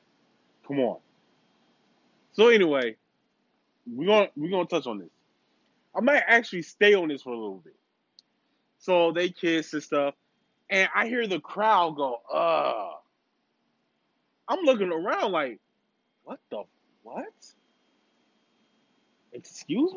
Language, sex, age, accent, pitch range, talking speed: English, male, 20-39, American, 200-280 Hz, 125 wpm